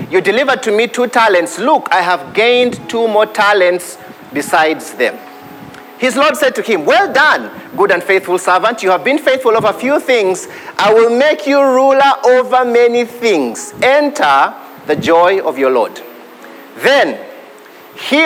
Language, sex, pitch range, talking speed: English, male, 195-265 Hz, 165 wpm